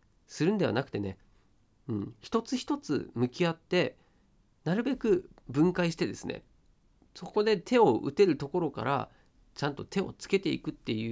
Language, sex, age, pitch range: Japanese, male, 40-59, 105-160 Hz